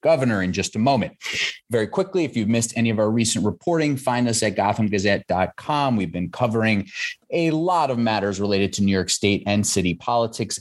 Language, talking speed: English, 190 wpm